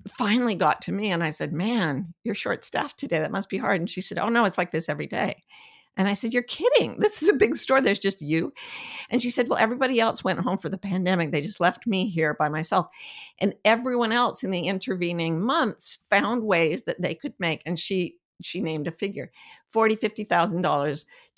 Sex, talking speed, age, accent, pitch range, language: female, 220 wpm, 50-69, American, 170-225 Hz, English